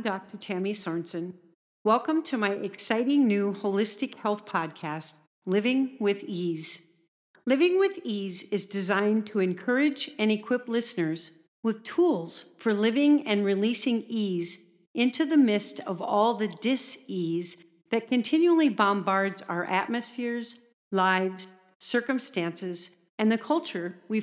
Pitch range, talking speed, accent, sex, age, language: 180-240 Hz, 120 wpm, American, female, 50-69, English